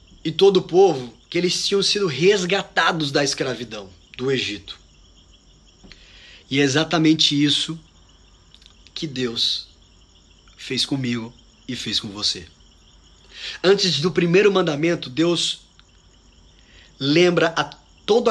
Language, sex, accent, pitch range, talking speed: Portuguese, male, Brazilian, 125-205 Hz, 110 wpm